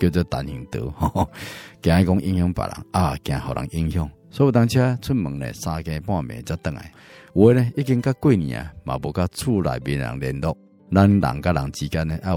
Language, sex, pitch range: Chinese, male, 80-100 Hz